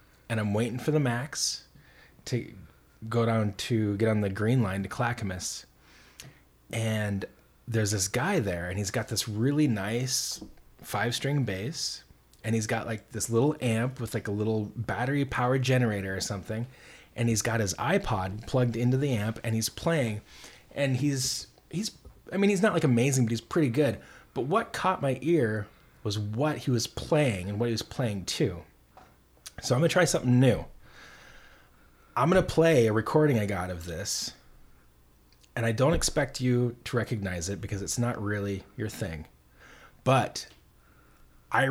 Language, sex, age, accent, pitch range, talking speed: English, male, 30-49, American, 100-125 Hz, 175 wpm